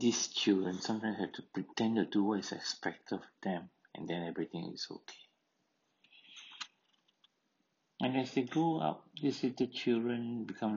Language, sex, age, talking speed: English, male, 60-79, 150 wpm